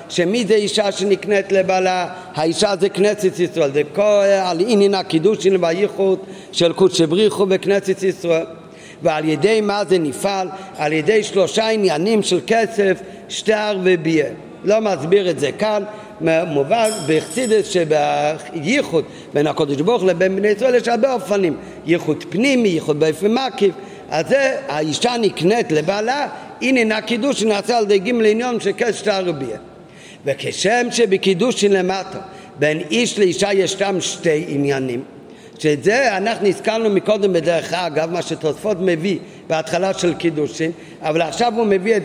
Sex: male